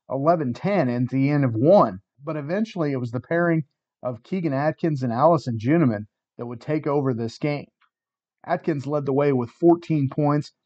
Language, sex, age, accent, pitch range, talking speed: English, male, 40-59, American, 130-165 Hz, 170 wpm